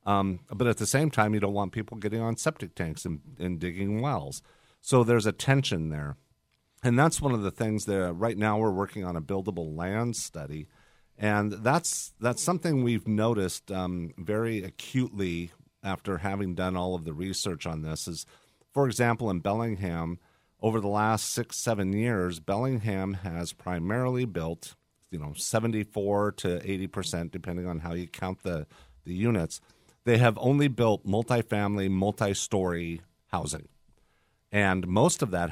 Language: English